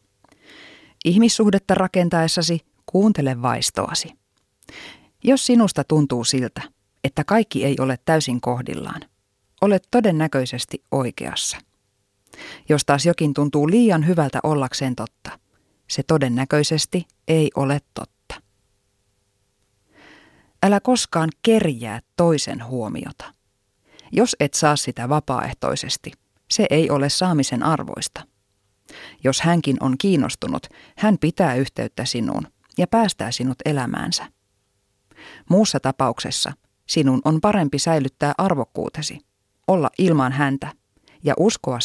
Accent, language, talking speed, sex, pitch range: native, Finnish, 100 wpm, female, 120-170 Hz